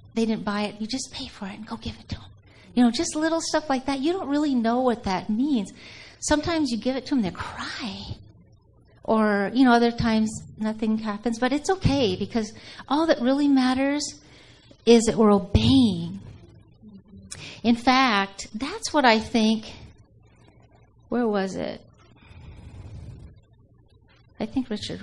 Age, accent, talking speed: 50-69, American, 165 wpm